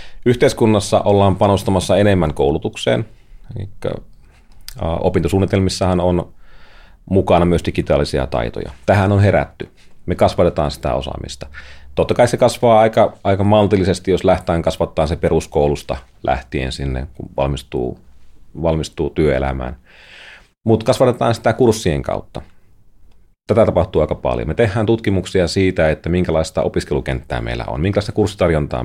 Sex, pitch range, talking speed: male, 80-105 Hz, 120 wpm